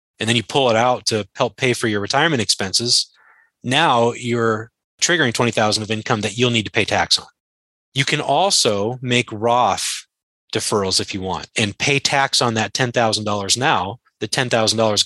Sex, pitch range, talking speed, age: male, 105-130 Hz, 175 wpm, 30-49